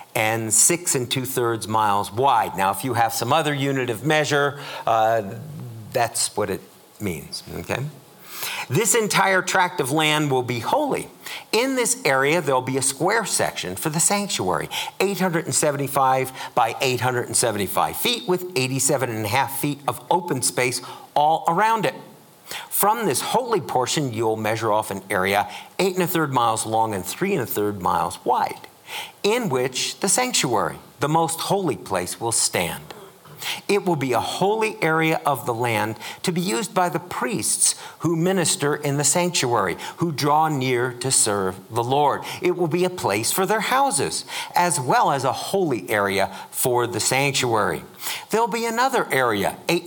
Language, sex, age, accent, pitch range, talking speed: English, male, 50-69, American, 120-180 Hz, 165 wpm